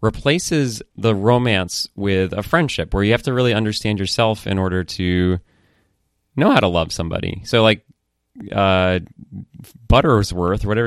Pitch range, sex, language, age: 90-105 Hz, male, English, 30-49